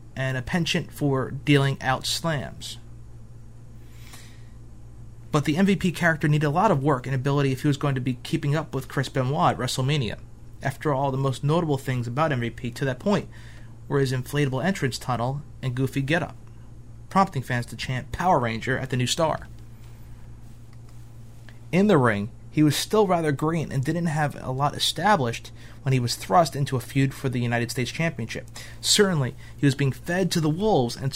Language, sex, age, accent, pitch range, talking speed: English, male, 30-49, American, 115-150 Hz, 185 wpm